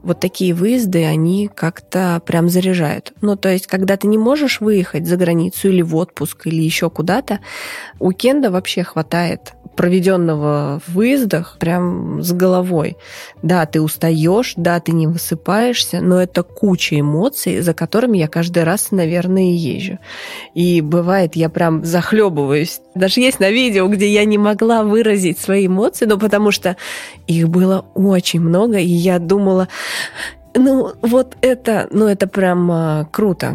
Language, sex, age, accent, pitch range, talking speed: Russian, female, 20-39, native, 170-205 Hz, 150 wpm